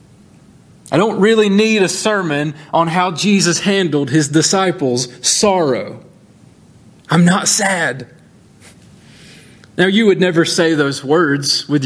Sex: male